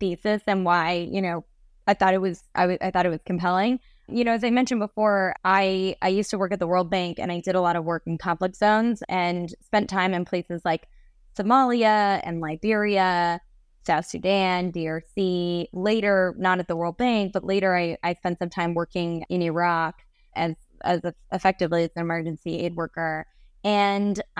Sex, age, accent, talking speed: female, 20-39, American, 190 wpm